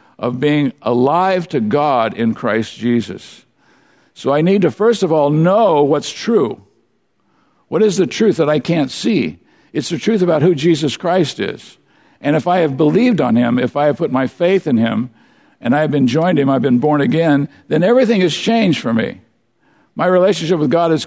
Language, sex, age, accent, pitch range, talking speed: English, male, 60-79, American, 125-170 Hz, 200 wpm